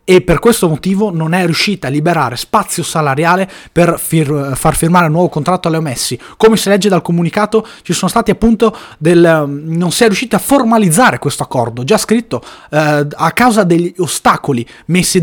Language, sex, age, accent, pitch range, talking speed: Italian, male, 20-39, native, 140-185 Hz, 185 wpm